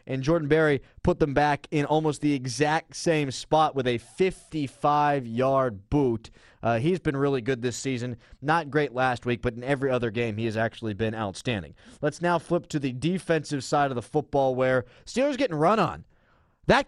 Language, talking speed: English, 190 wpm